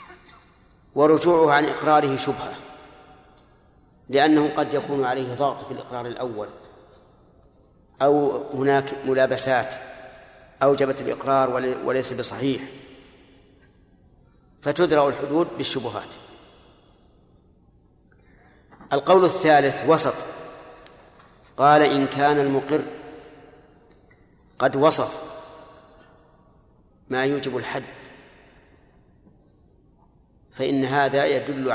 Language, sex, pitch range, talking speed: Arabic, male, 135-150 Hz, 70 wpm